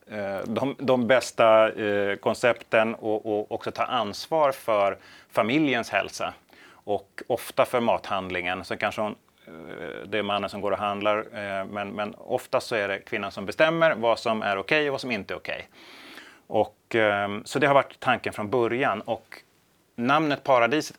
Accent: native